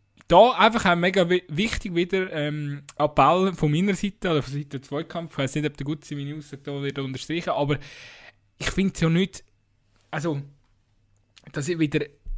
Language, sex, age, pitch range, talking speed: German, male, 20-39, 125-165 Hz, 180 wpm